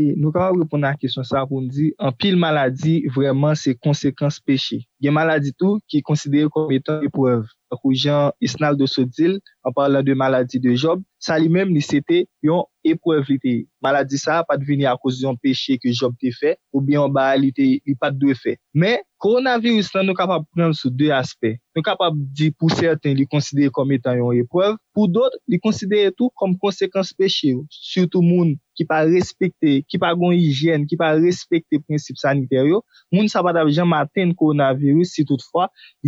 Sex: male